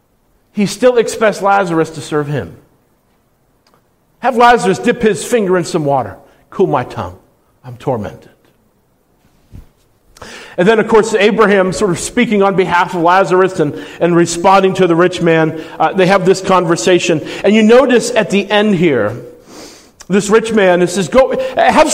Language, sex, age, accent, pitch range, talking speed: English, male, 50-69, American, 175-235 Hz, 155 wpm